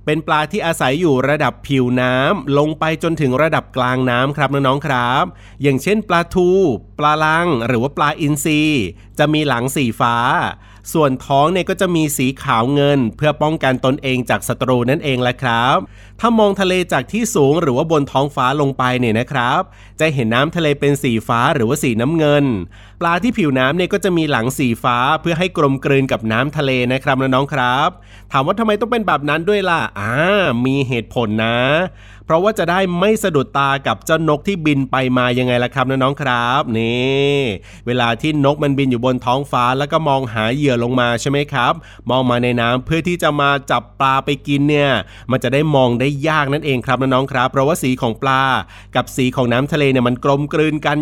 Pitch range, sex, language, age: 125-155 Hz, male, Thai, 30-49